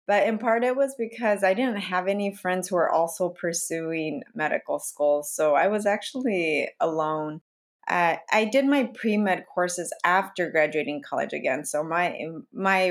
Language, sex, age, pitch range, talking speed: English, female, 30-49, 160-195 Hz, 165 wpm